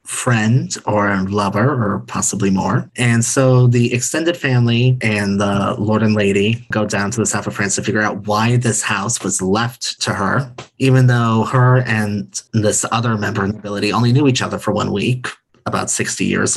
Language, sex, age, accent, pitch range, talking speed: English, male, 30-49, American, 105-130 Hz, 190 wpm